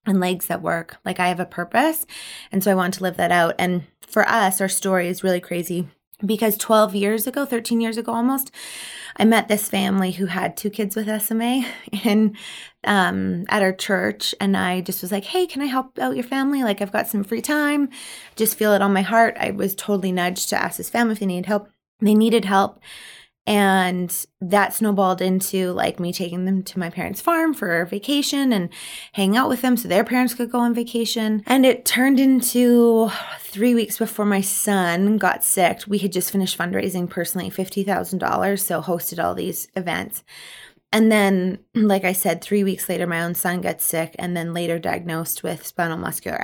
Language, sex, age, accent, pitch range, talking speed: English, female, 20-39, American, 180-230 Hz, 200 wpm